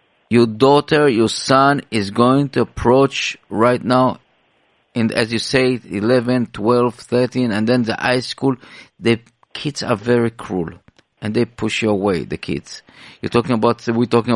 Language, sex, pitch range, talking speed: English, male, 115-150 Hz, 165 wpm